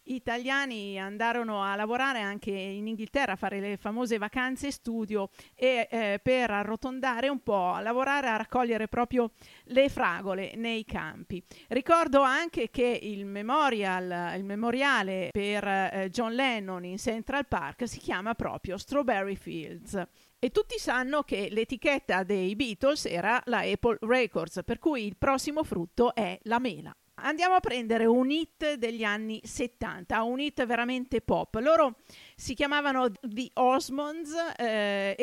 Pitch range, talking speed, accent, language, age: 205-270 Hz, 145 wpm, native, Italian, 50-69